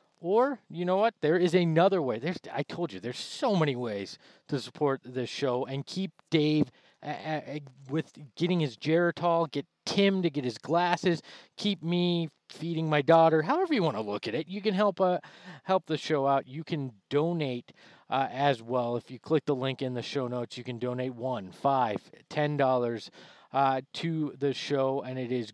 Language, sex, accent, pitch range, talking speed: English, male, American, 130-165 Hz, 195 wpm